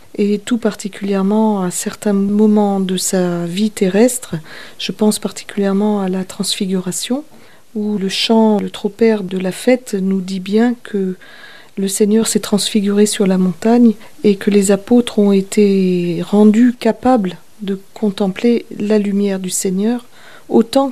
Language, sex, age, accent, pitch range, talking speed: French, female, 40-59, French, 200-235 Hz, 145 wpm